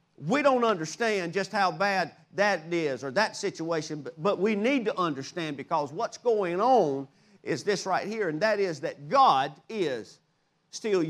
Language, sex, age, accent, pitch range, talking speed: English, male, 40-59, American, 195-280 Hz, 170 wpm